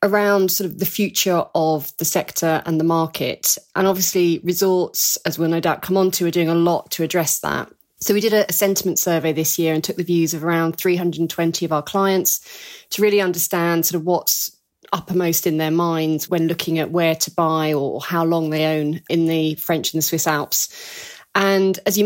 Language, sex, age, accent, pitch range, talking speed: English, female, 30-49, British, 165-195 Hz, 210 wpm